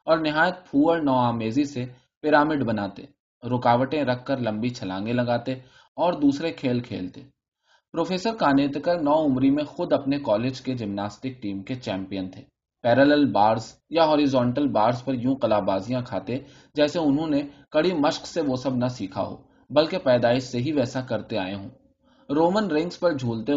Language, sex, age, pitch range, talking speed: Urdu, male, 20-39, 115-150 Hz, 110 wpm